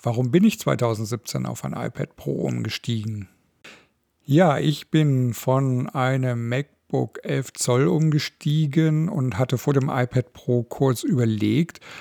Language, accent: German, German